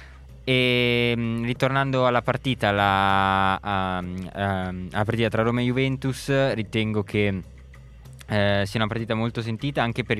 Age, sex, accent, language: 20-39, male, native, Italian